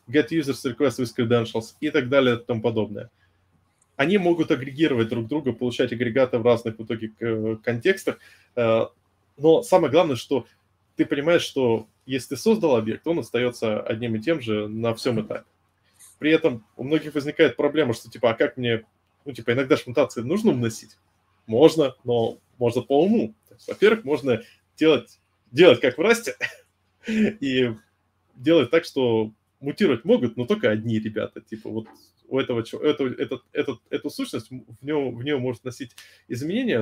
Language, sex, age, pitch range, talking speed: Russian, male, 20-39, 110-140 Hz, 160 wpm